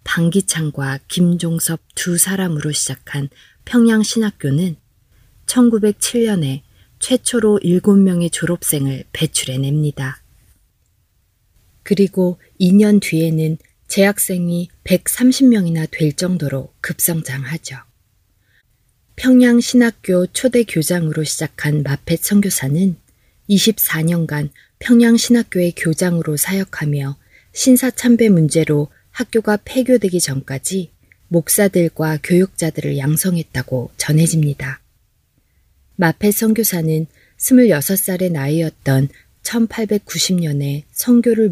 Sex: female